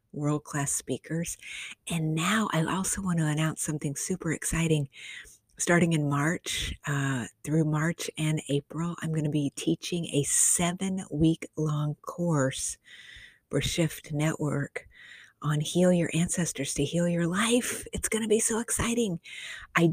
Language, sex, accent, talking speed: English, female, American, 140 wpm